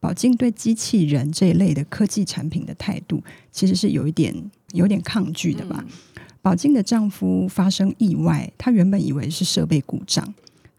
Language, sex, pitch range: Chinese, female, 160-200 Hz